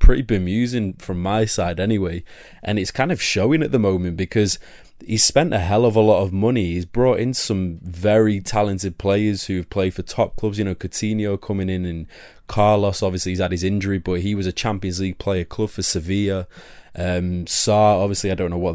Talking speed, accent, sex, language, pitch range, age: 210 wpm, British, male, English, 90-110 Hz, 20-39